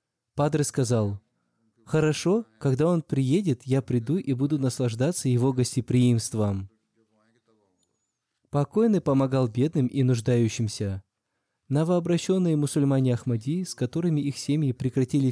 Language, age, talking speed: Russian, 20-39, 100 wpm